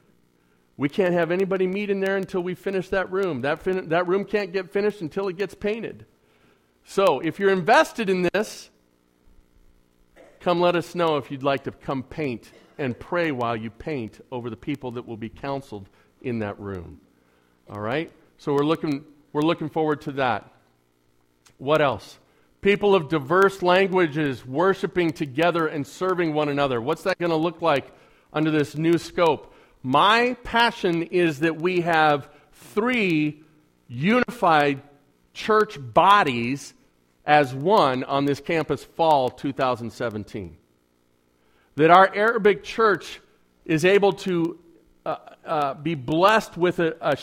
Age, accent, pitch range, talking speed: 50-69, American, 125-190 Hz, 145 wpm